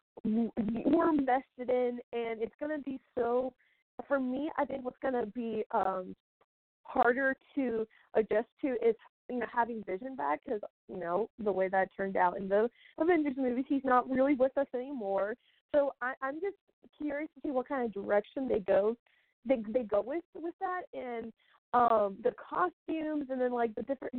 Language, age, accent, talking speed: English, 20-39, American, 185 wpm